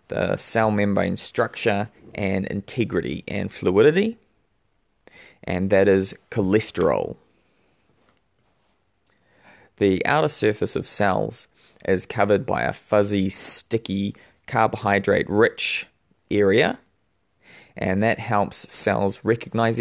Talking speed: 90 wpm